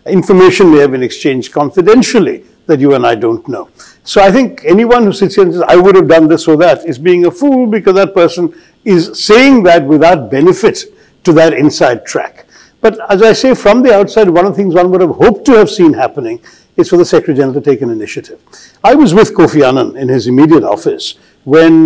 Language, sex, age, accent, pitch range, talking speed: English, male, 60-79, Indian, 150-235 Hz, 225 wpm